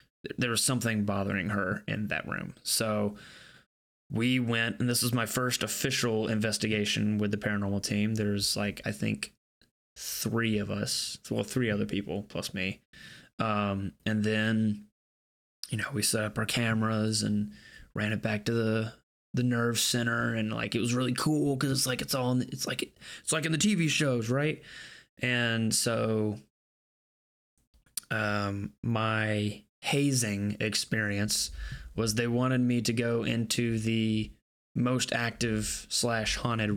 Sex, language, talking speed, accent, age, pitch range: male, English, 155 wpm, American, 20-39, 105-125 Hz